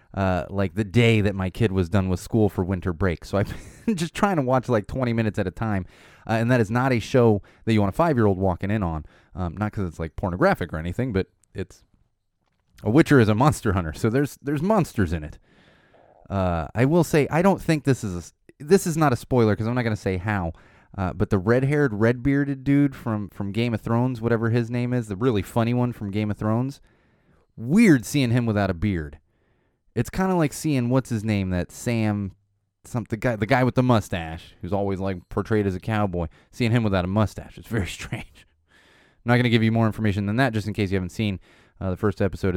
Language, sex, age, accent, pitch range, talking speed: English, male, 30-49, American, 90-120 Hz, 230 wpm